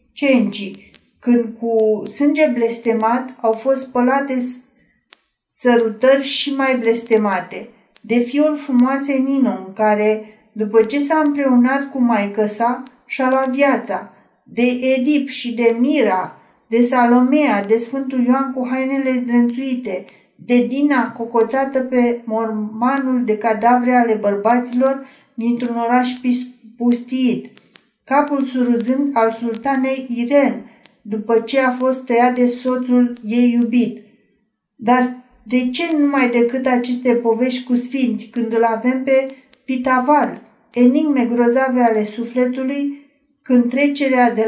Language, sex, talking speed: Romanian, female, 115 wpm